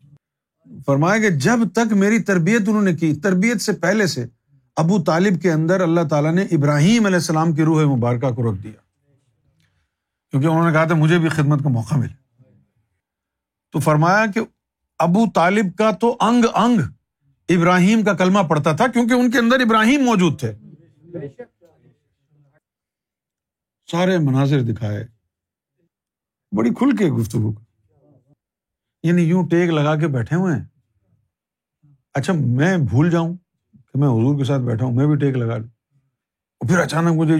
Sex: male